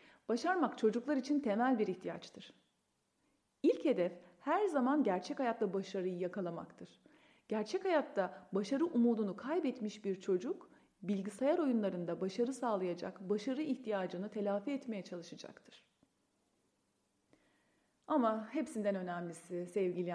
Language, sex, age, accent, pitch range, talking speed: Turkish, female, 40-59, native, 195-285 Hz, 100 wpm